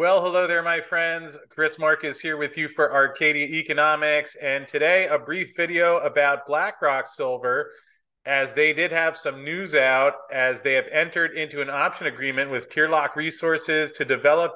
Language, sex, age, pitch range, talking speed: English, male, 30-49, 130-155 Hz, 175 wpm